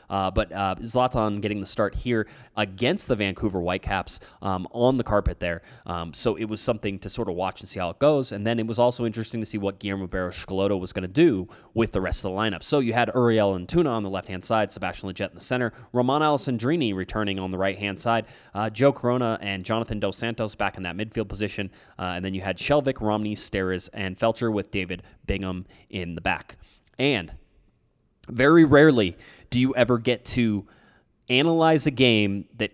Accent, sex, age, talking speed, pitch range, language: American, male, 20-39, 210 wpm, 95-130 Hz, English